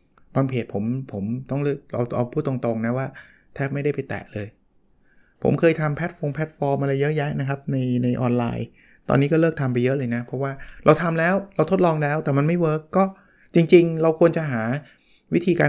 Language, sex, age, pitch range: Thai, male, 20-39, 120-155 Hz